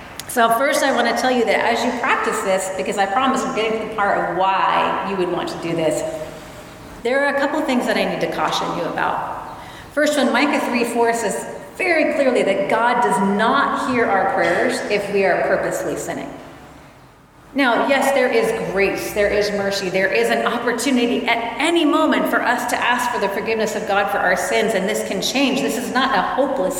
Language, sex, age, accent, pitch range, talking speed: English, female, 30-49, American, 190-240 Hz, 215 wpm